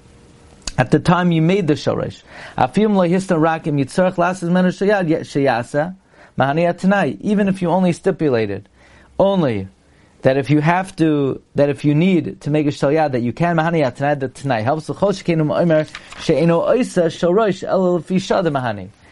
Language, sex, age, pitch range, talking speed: English, male, 30-49, 145-180 Hz, 95 wpm